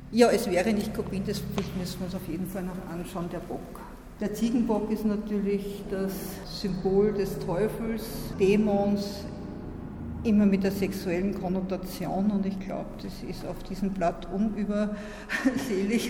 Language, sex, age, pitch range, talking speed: German, female, 50-69, 180-205 Hz, 145 wpm